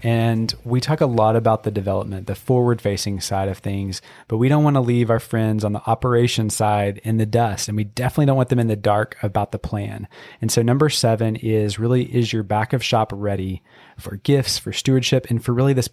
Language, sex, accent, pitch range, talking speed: English, male, American, 105-125 Hz, 230 wpm